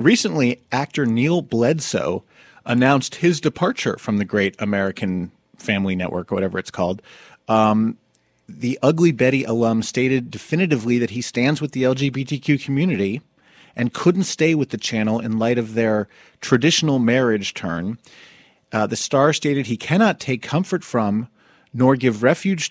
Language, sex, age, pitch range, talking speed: English, male, 30-49, 115-155 Hz, 150 wpm